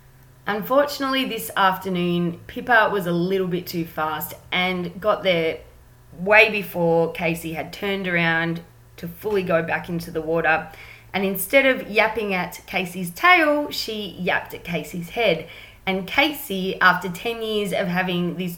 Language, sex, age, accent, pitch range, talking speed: English, female, 20-39, Australian, 165-195 Hz, 150 wpm